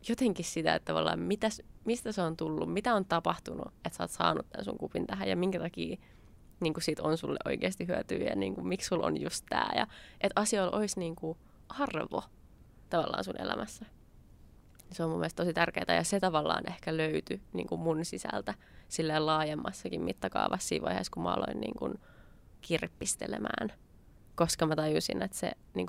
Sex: female